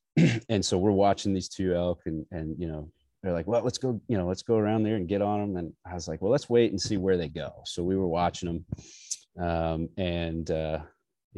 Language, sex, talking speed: English, male, 245 wpm